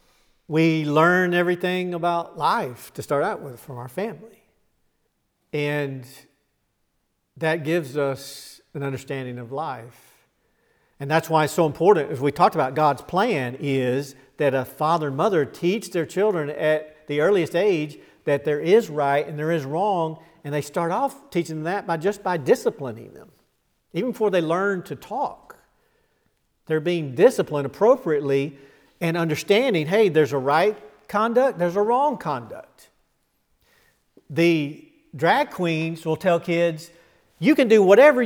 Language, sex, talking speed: English, male, 150 wpm